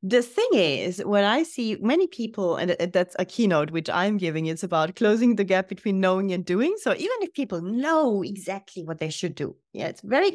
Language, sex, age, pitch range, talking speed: English, female, 30-49, 190-245 Hz, 215 wpm